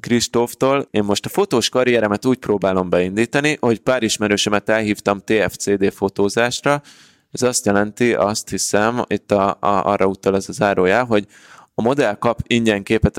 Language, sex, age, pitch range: Hungarian, male, 20-39, 100-120 Hz